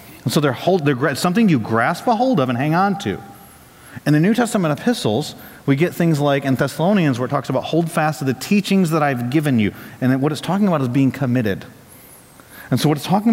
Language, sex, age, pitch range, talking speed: English, male, 30-49, 125-170 Hz, 240 wpm